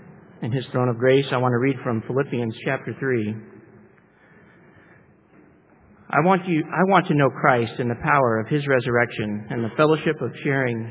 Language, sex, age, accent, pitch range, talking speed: English, male, 50-69, American, 110-135 Hz, 175 wpm